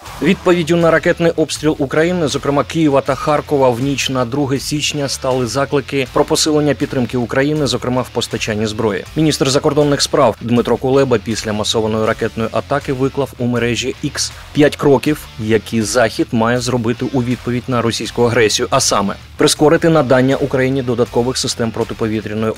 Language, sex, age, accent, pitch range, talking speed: Ukrainian, male, 20-39, native, 115-140 Hz, 150 wpm